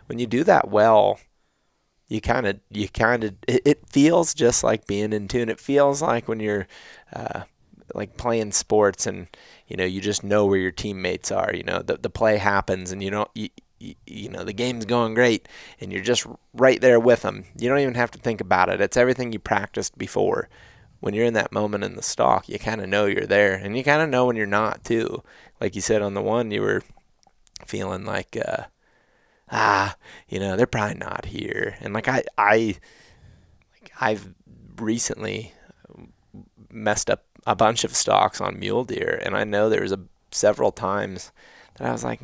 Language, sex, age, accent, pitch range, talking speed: English, male, 20-39, American, 100-120 Hz, 200 wpm